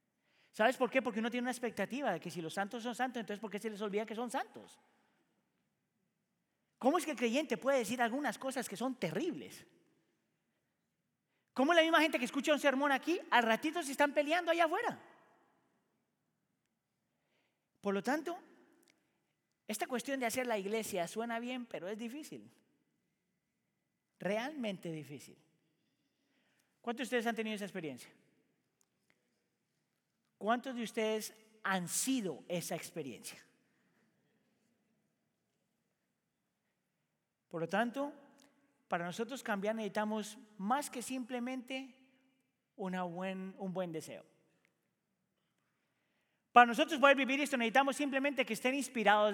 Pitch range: 215-275 Hz